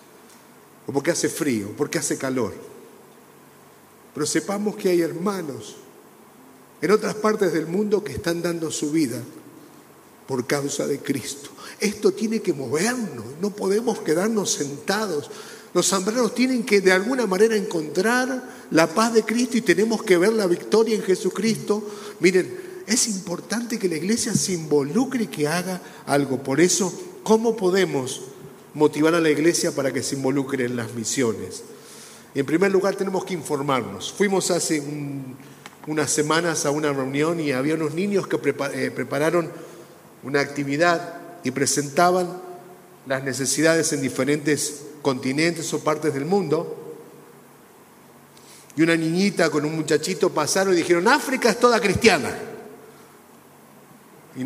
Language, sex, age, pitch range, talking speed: Spanish, male, 50-69, 145-210 Hz, 140 wpm